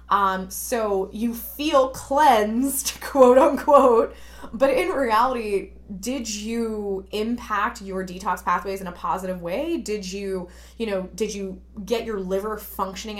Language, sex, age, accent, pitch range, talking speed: English, female, 20-39, American, 190-225 Hz, 135 wpm